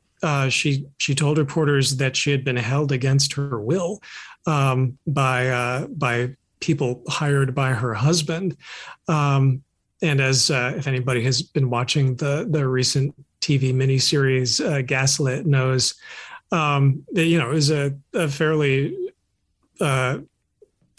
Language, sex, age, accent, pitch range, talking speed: English, male, 40-59, American, 130-155 Hz, 140 wpm